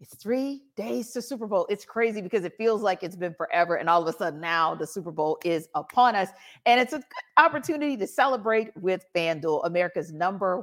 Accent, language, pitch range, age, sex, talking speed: American, English, 180-275 Hz, 40-59, female, 210 wpm